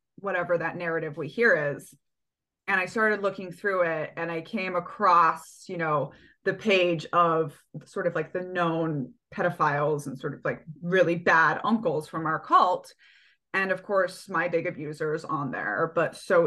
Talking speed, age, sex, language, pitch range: 175 wpm, 20-39, female, English, 165-195 Hz